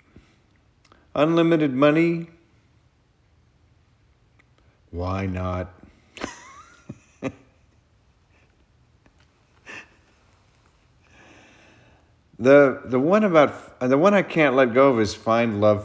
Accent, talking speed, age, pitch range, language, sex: American, 70 wpm, 50-69, 90-115 Hz, English, male